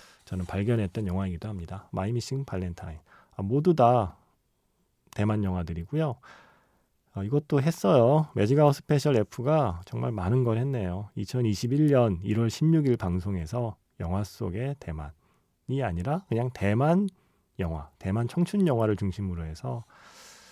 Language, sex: Korean, male